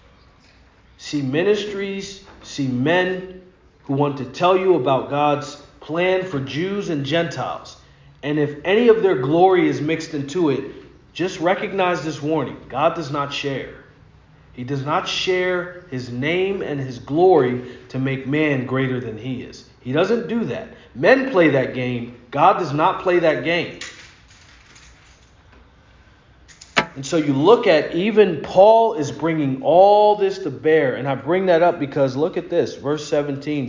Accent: American